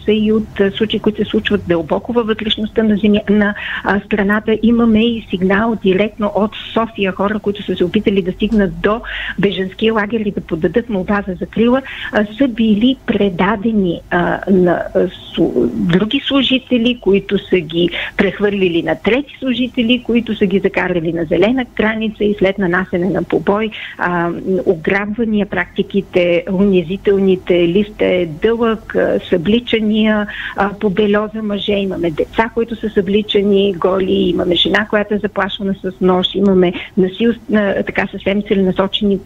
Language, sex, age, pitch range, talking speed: Bulgarian, female, 50-69, 190-215 Hz, 135 wpm